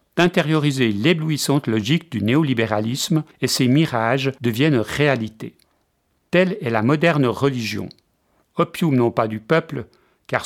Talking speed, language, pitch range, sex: 120 wpm, French, 115-155 Hz, male